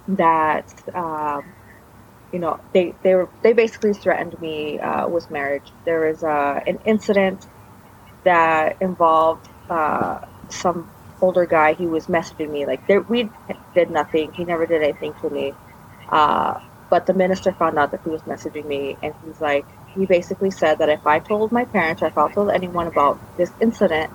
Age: 30-49